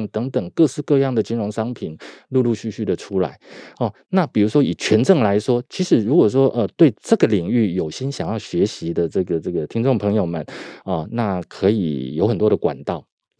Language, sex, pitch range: Chinese, male, 105-135 Hz